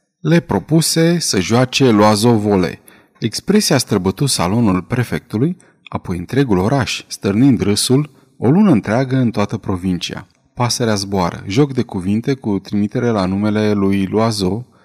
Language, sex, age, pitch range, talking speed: Romanian, male, 30-49, 100-145 Hz, 125 wpm